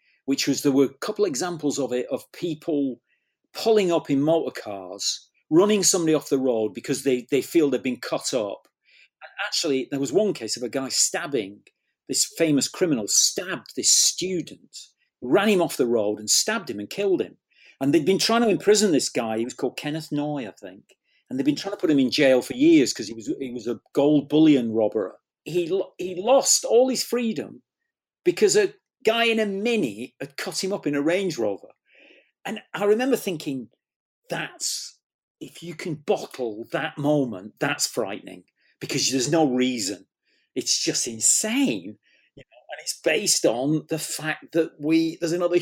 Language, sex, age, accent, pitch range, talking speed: English, male, 40-59, British, 130-205 Hz, 190 wpm